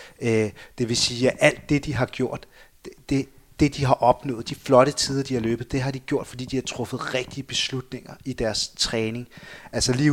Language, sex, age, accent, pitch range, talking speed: Danish, male, 30-49, native, 115-135 Hz, 205 wpm